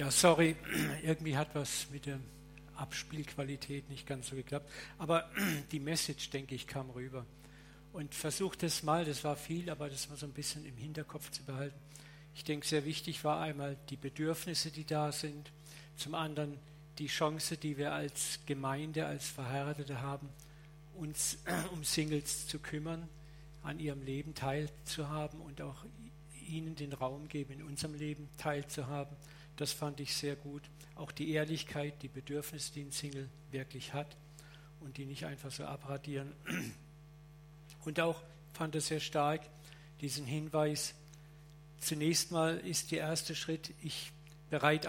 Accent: German